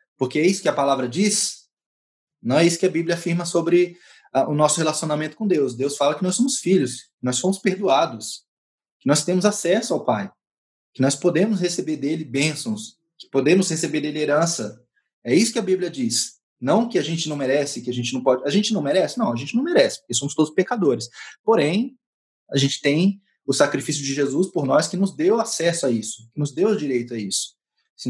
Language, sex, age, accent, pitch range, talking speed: Portuguese, male, 20-39, Brazilian, 135-190 Hz, 215 wpm